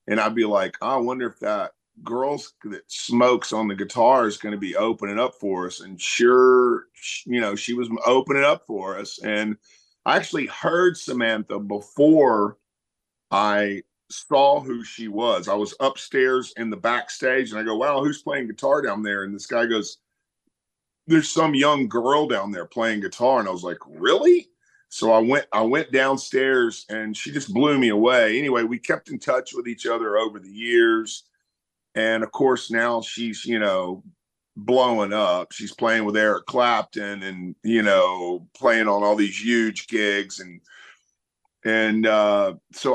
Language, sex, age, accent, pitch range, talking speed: English, male, 40-59, American, 105-130 Hz, 175 wpm